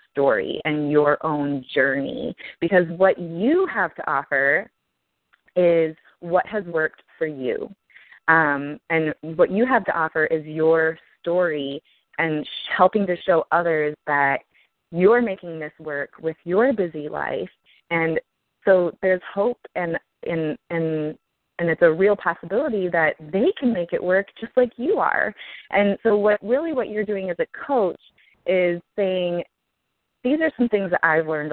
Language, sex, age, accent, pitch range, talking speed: English, female, 20-39, American, 150-195 Hz, 160 wpm